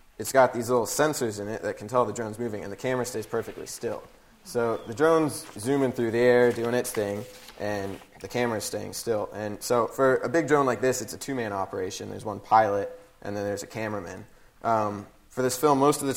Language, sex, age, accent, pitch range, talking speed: English, male, 20-39, American, 105-130 Hz, 225 wpm